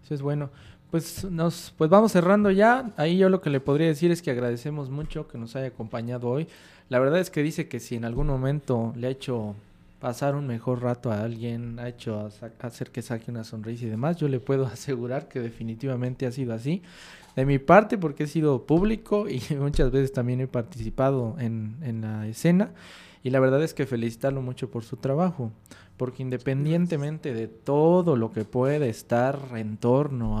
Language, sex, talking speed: Spanish, male, 195 wpm